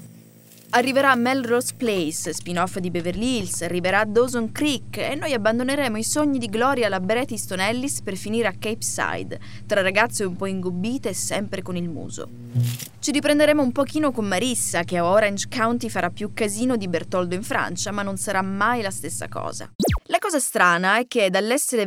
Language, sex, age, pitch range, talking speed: Italian, female, 20-39, 180-240 Hz, 185 wpm